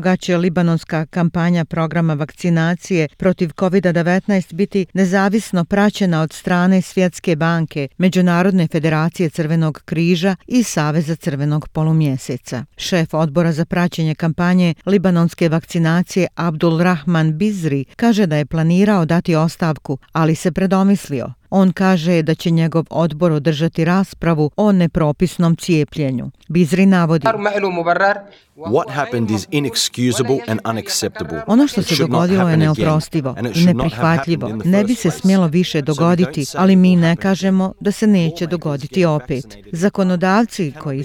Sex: female